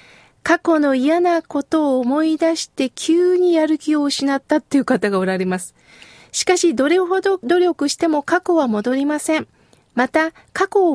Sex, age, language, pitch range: female, 40-59, Japanese, 250-350 Hz